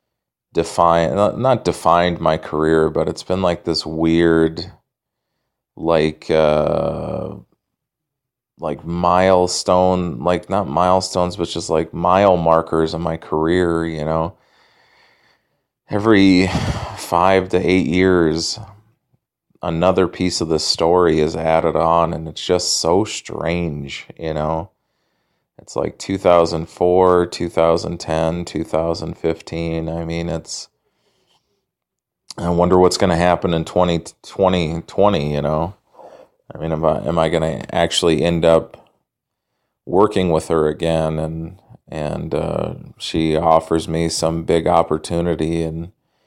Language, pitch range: English, 80-90 Hz